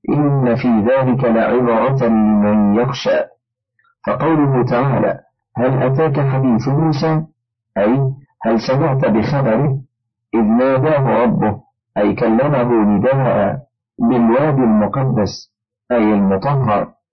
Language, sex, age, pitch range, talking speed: Arabic, male, 50-69, 115-145 Hz, 90 wpm